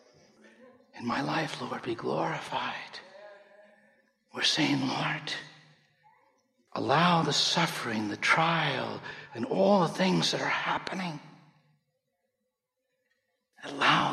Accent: American